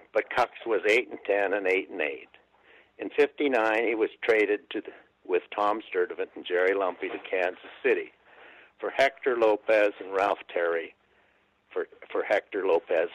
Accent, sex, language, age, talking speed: American, male, English, 60-79, 165 wpm